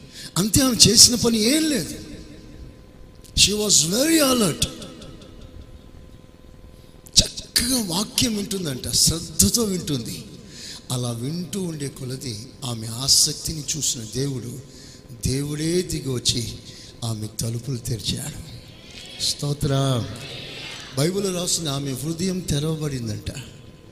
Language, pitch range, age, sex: Telugu, 120-160 Hz, 60-79, male